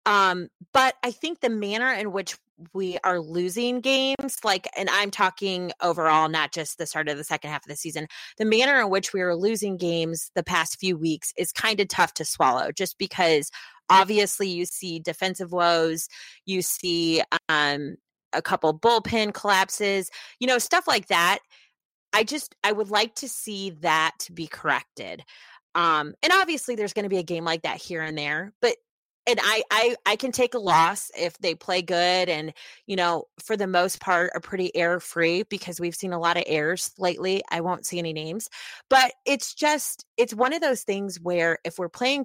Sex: female